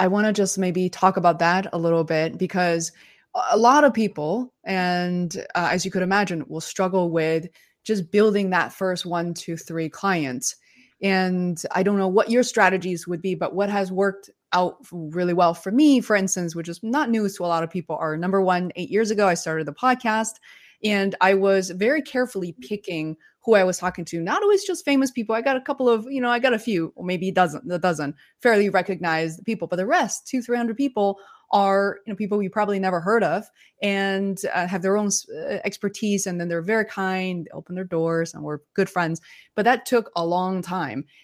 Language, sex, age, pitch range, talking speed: English, female, 20-39, 175-210 Hz, 210 wpm